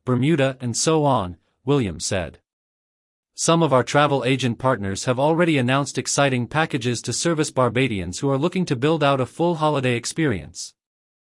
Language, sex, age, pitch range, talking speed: English, male, 40-59, 120-155 Hz, 160 wpm